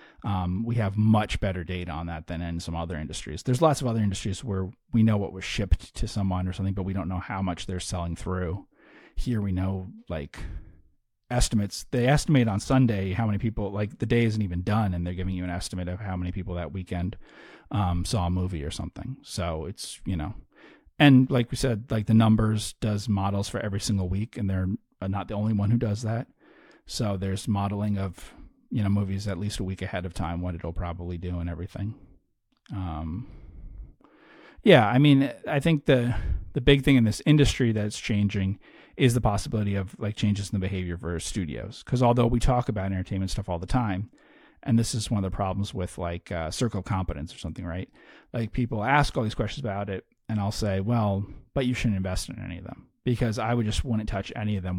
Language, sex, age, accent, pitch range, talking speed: English, male, 30-49, American, 90-115 Hz, 220 wpm